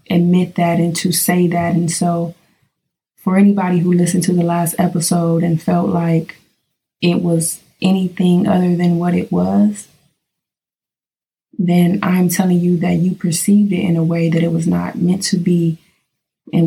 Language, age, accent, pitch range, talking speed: English, 20-39, American, 165-180 Hz, 165 wpm